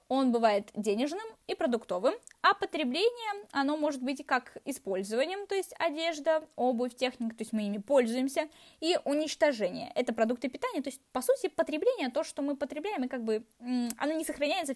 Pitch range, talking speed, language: 230-320 Hz, 170 wpm, Russian